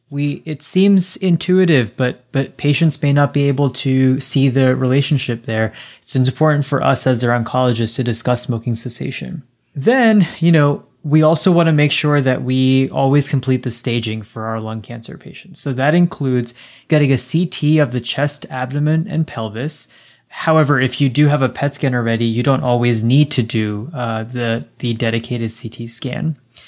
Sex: male